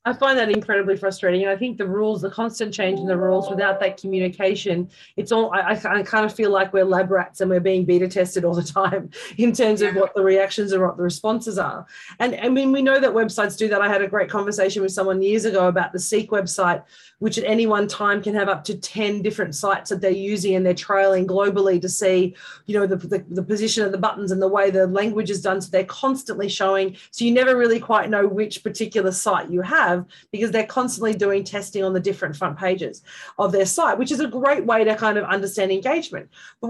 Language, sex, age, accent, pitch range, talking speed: English, female, 30-49, Australian, 190-220 Hz, 240 wpm